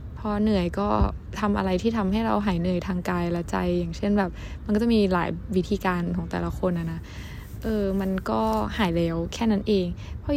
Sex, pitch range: female, 170-205 Hz